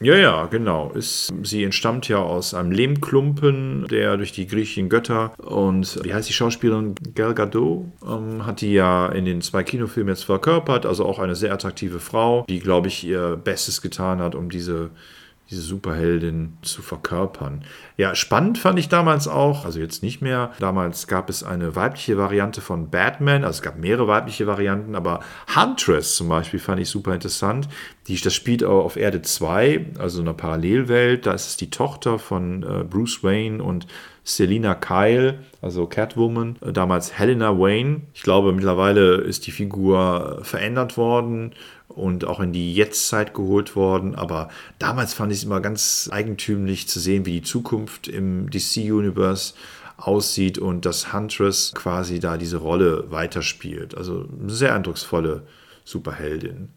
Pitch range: 90-115 Hz